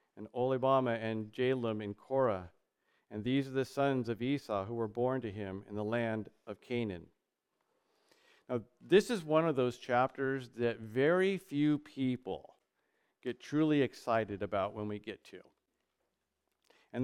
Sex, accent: male, American